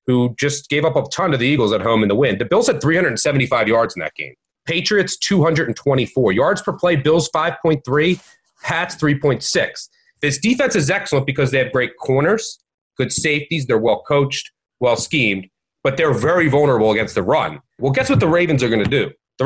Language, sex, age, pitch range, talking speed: English, male, 30-49, 135-175 Hz, 190 wpm